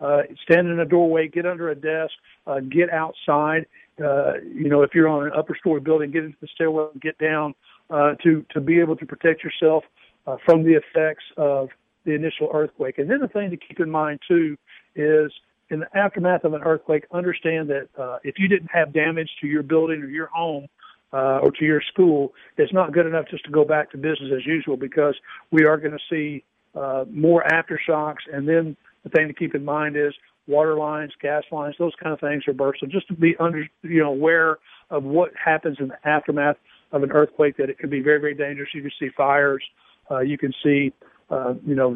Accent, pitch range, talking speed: American, 145-165 Hz, 220 wpm